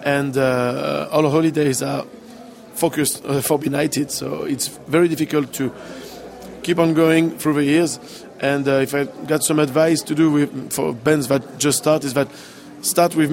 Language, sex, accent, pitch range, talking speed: English, male, French, 140-160 Hz, 175 wpm